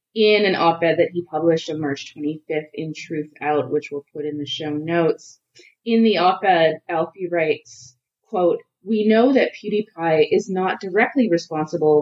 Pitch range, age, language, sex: 150-190 Hz, 20-39, English, female